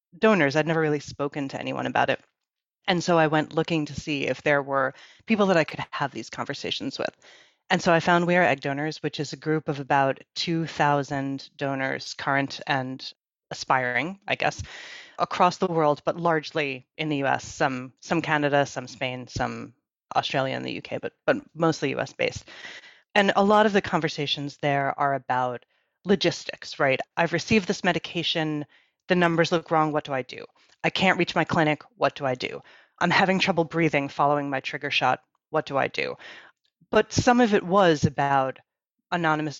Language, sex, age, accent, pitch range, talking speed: English, female, 30-49, American, 140-170 Hz, 185 wpm